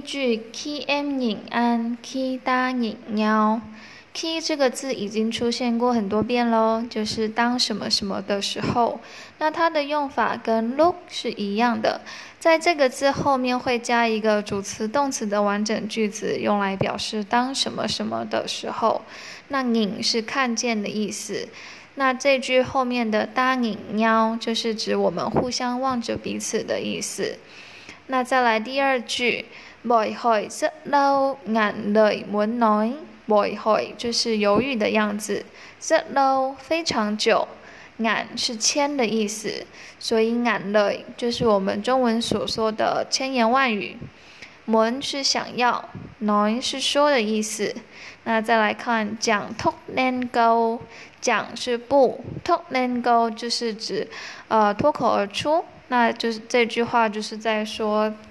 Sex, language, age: female, Vietnamese, 10-29